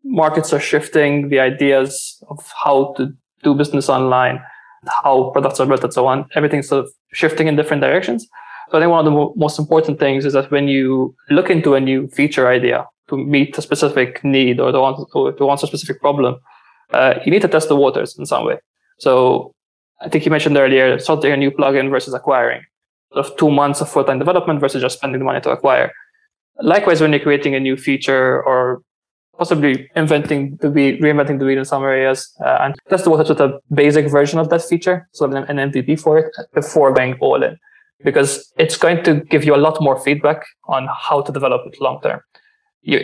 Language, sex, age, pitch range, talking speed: English, male, 20-39, 135-160 Hz, 205 wpm